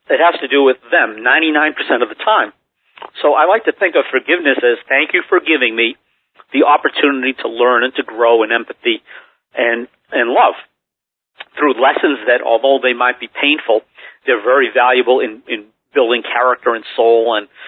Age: 50-69